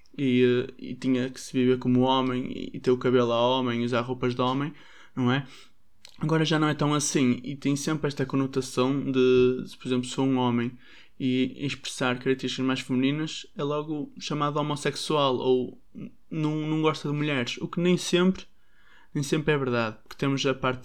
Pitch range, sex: 125-150 Hz, male